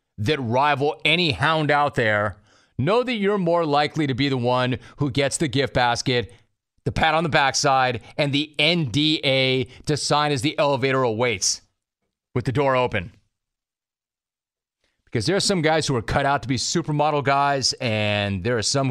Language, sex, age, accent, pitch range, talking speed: English, male, 30-49, American, 115-145 Hz, 175 wpm